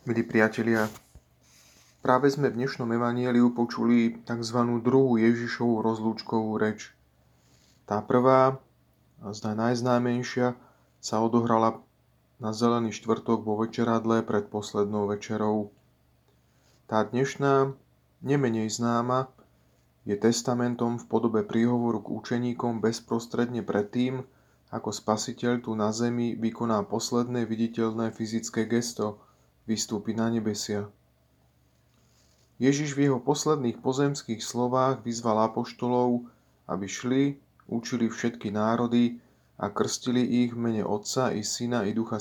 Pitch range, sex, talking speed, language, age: 105-120 Hz, male, 110 wpm, Slovak, 30-49